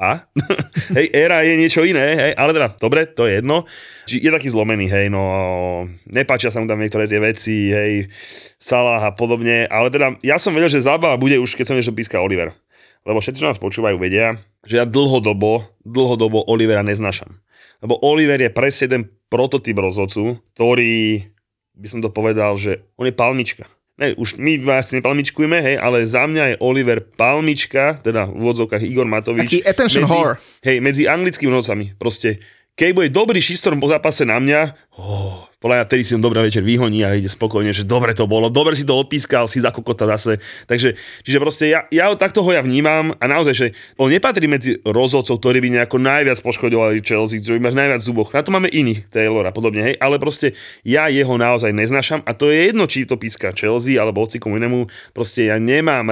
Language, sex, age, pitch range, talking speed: Slovak, male, 30-49, 110-140 Hz, 190 wpm